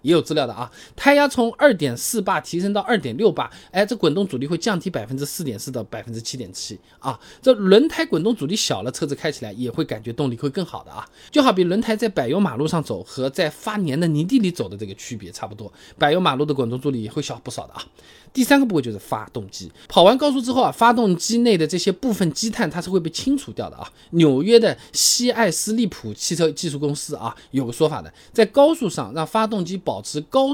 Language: Chinese